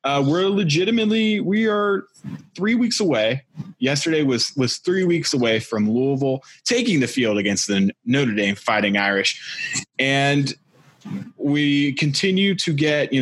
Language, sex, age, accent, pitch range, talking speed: English, male, 20-39, American, 110-170 Hz, 140 wpm